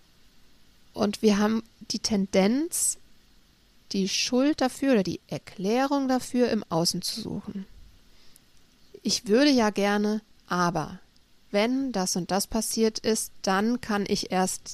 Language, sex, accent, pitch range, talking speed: German, female, German, 195-235 Hz, 125 wpm